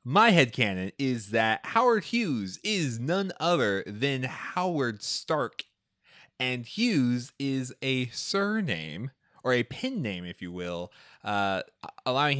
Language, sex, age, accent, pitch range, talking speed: English, male, 20-39, American, 95-125 Hz, 125 wpm